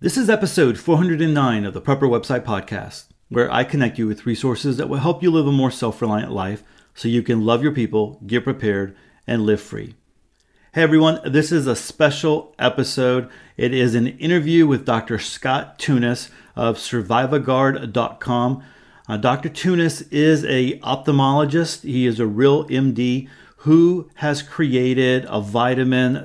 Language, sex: English, male